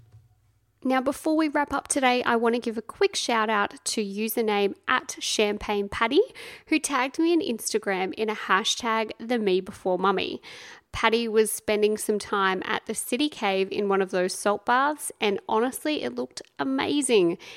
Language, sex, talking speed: English, female, 175 wpm